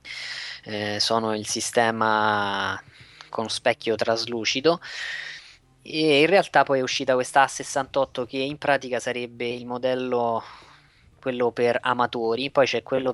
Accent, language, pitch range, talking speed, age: native, Italian, 110-135 Hz, 125 wpm, 20-39